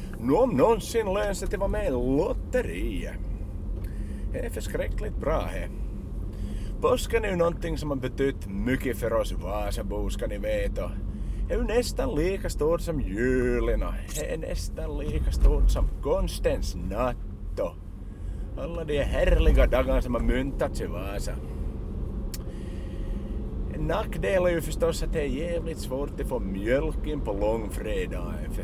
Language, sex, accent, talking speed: Swedish, male, Finnish, 120 wpm